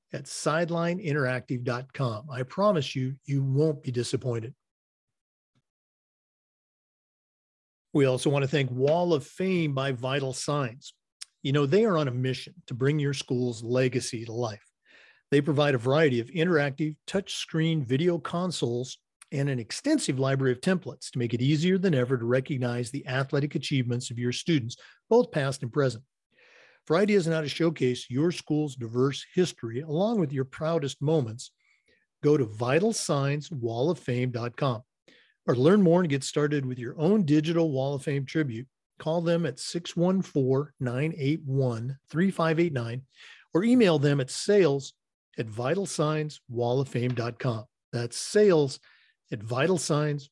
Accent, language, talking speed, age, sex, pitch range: American, English, 135 wpm, 40-59, male, 125-160 Hz